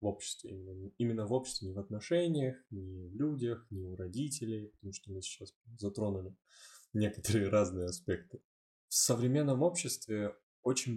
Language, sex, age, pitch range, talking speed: Russian, male, 10-29, 95-115 Hz, 150 wpm